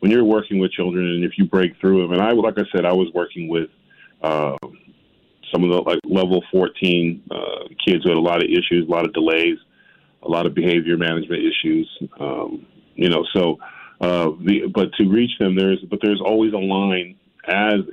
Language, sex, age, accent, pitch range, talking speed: English, male, 40-59, American, 90-105 Hz, 210 wpm